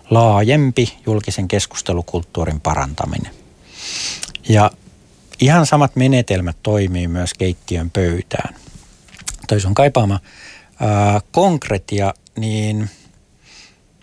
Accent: native